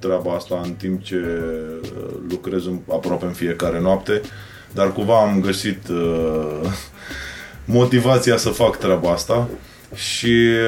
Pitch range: 90-105 Hz